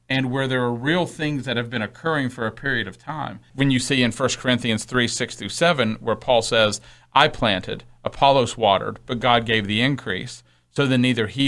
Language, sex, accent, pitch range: English, male, American, 115-150 Hz